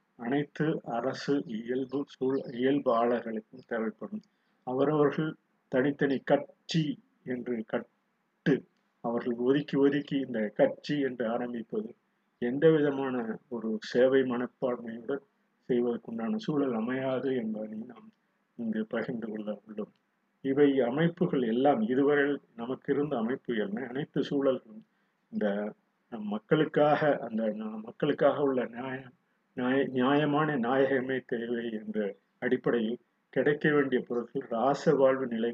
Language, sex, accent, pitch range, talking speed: Tamil, male, native, 120-145 Hz, 100 wpm